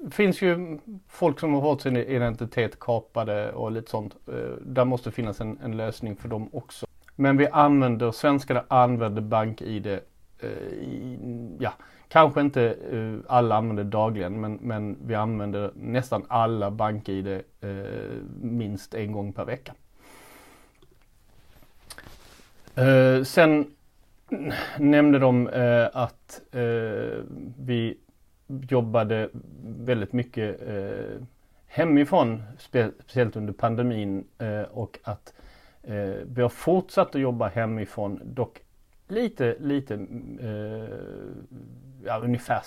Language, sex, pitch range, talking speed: Swedish, male, 110-140 Hz, 115 wpm